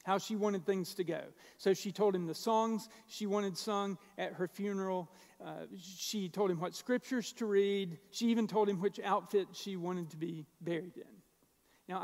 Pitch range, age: 185-230 Hz, 50-69